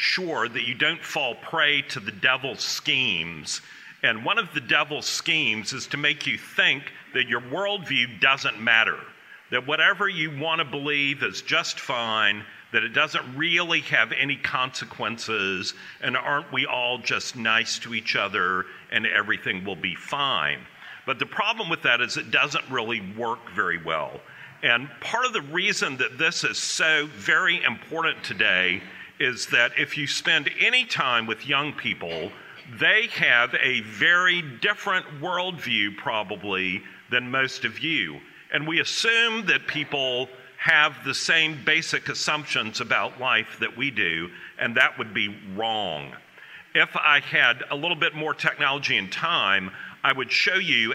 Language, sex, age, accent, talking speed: English, male, 50-69, American, 160 wpm